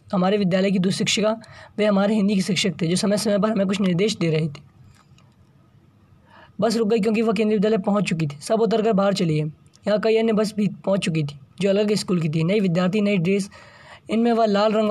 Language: Hindi